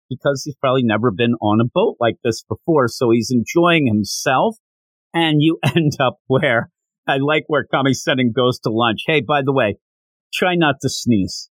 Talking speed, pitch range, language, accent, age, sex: 185 wpm, 115-170 Hz, English, American, 50-69, male